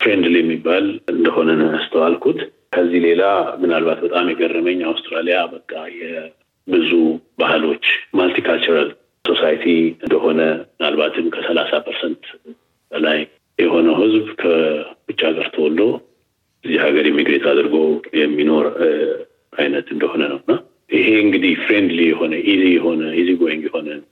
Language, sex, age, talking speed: Amharic, male, 50-69, 100 wpm